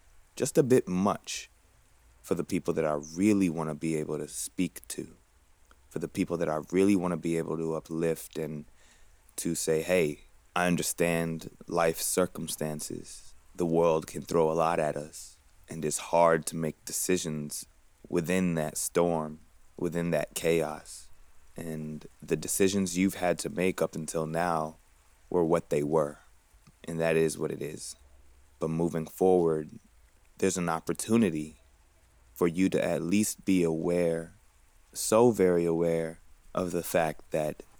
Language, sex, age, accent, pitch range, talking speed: English, male, 20-39, American, 80-90 Hz, 155 wpm